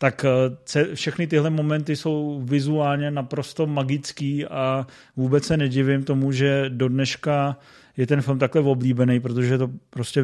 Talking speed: 140 wpm